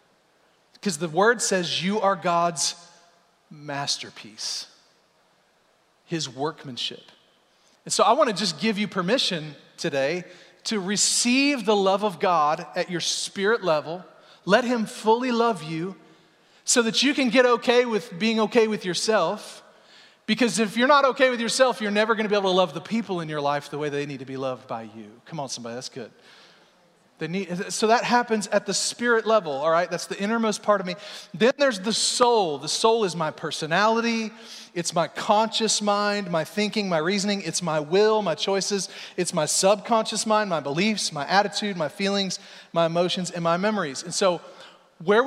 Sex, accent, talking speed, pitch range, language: male, American, 175 wpm, 170-225 Hz, English